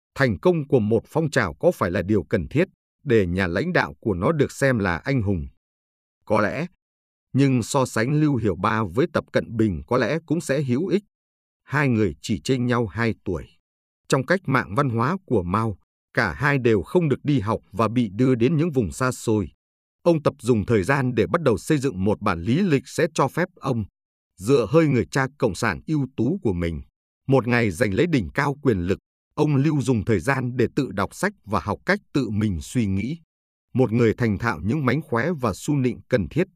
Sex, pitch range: male, 100-140 Hz